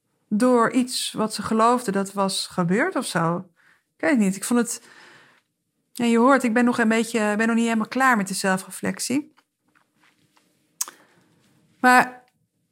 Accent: Dutch